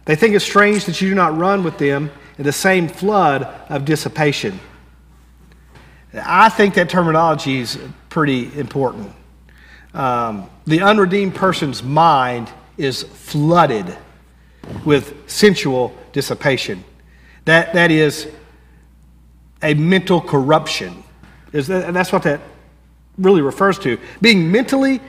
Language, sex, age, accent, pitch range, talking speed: English, male, 50-69, American, 145-200 Hz, 115 wpm